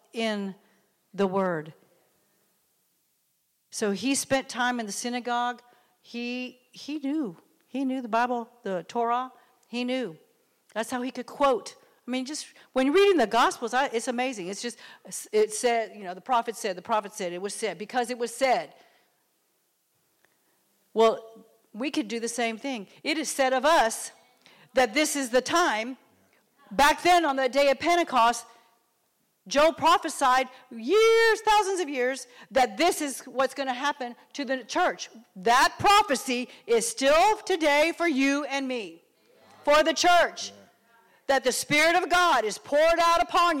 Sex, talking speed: female, 160 wpm